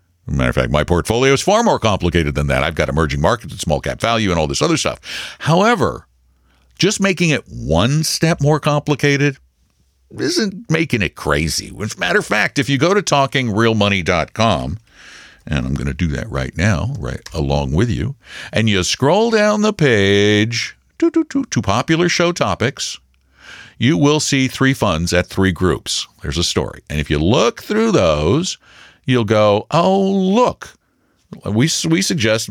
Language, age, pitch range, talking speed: English, 60-79, 85-135 Hz, 175 wpm